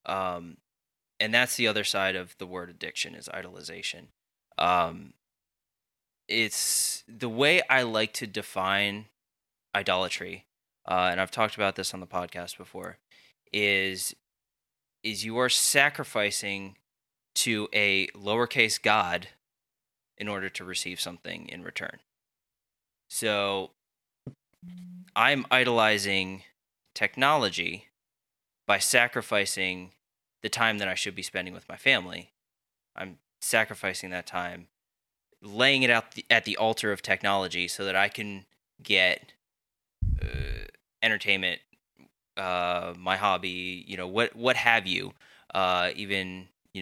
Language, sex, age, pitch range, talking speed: English, male, 20-39, 95-115 Hz, 120 wpm